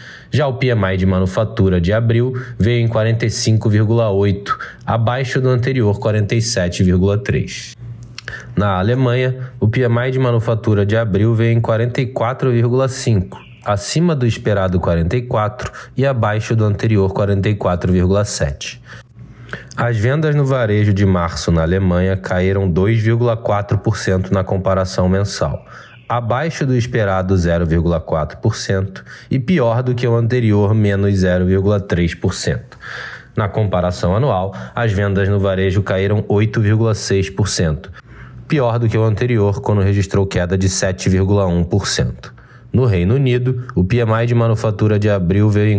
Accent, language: Brazilian, Portuguese